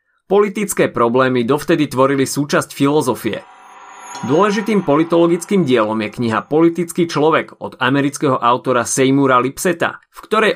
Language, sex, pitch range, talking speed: Slovak, male, 120-170 Hz, 115 wpm